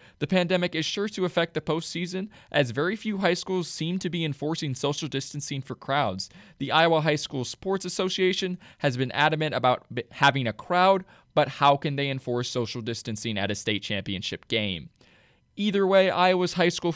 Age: 20-39